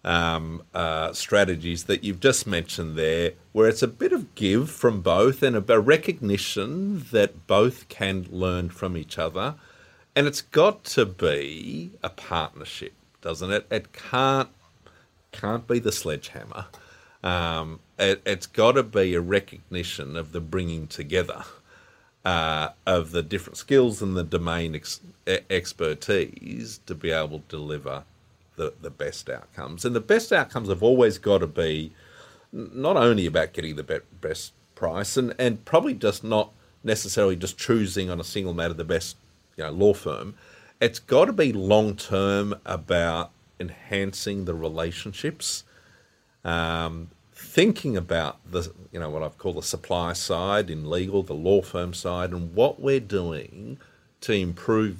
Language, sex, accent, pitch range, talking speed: English, male, Australian, 85-105 Hz, 155 wpm